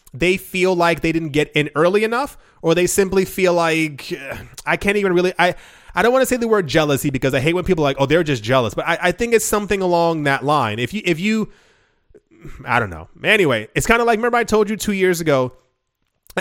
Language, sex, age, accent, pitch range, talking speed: English, male, 30-49, American, 150-195 Hz, 245 wpm